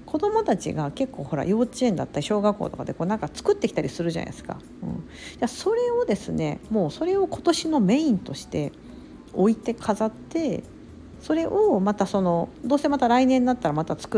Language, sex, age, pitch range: Japanese, female, 50-69, 180-275 Hz